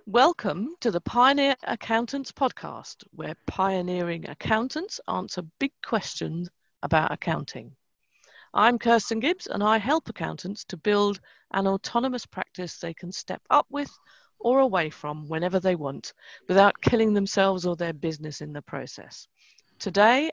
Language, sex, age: English, female, 50-69